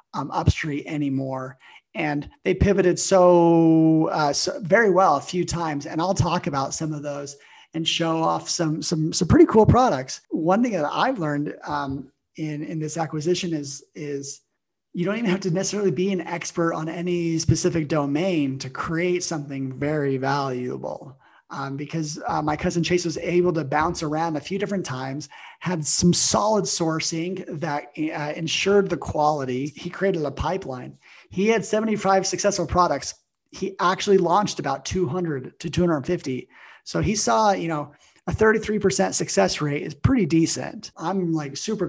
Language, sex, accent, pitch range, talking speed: English, male, American, 145-180 Hz, 165 wpm